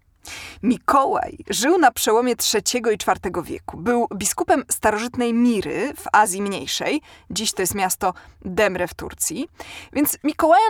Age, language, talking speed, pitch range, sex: 20-39, Polish, 135 wpm, 200-300 Hz, female